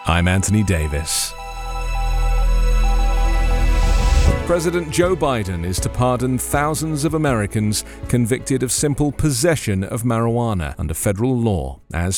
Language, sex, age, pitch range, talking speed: English, male, 40-59, 100-140 Hz, 110 wpm